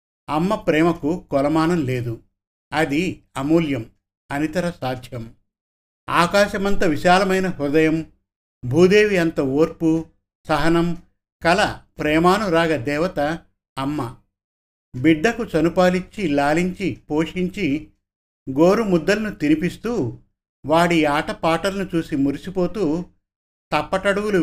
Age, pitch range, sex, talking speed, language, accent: 50-69, 135-175 Hz, male, 75 wpm, Telugu, native